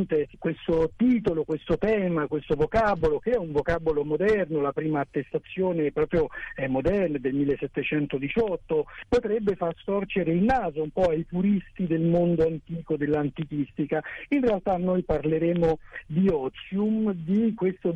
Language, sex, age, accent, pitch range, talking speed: Italian, male, 60-79, native, 155-205 Hz, 135 wpm